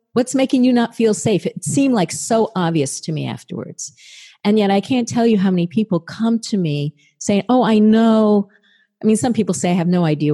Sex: female